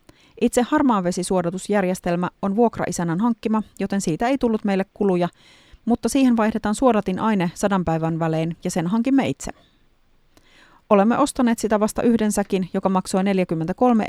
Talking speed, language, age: 140 wpm, Finnish, 30-49